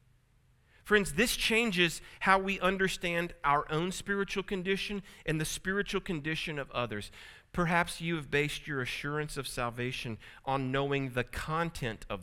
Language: English